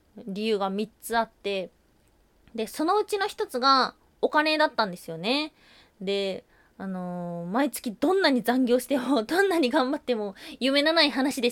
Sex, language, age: female, Japanese, 20-39